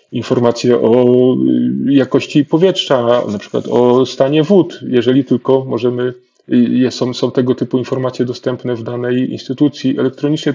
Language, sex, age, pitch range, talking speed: Polish, male, 20-39, 120-130 Hz, 125 wpm